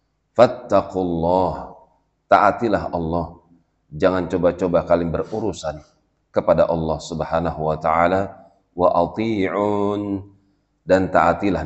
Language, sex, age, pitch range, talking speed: Indonesian, male, 40-59, 85-95 Hz, 75 wpm